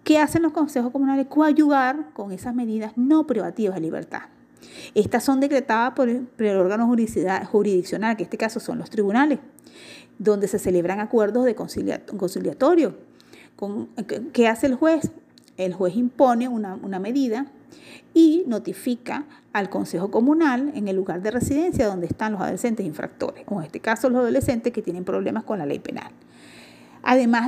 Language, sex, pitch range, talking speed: Spanish, female, 195-270 Hz, 160 wpm